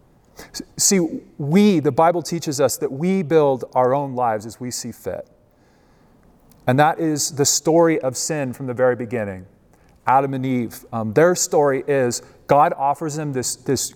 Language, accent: English, American